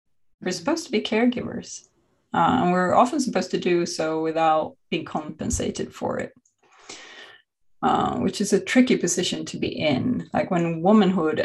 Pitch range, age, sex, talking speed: 170-235 Hz, 20-39, female, 155 wpm